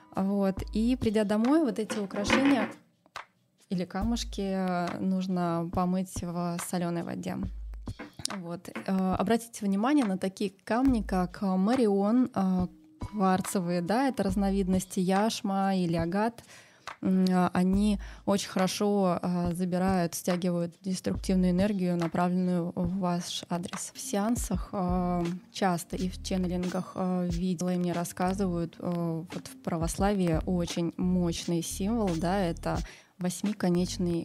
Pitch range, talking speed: 175-195 Hz, 100 wpm